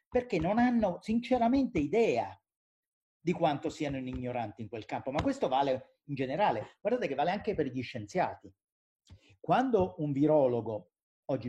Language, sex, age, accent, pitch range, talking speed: Italian, male, 40-59, native, 120-190 Hz, 150 wpm